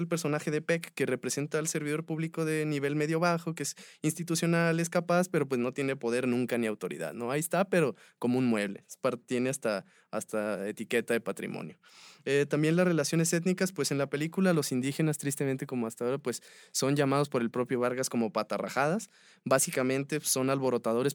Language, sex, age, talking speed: English, male, 20-39, 185 wpm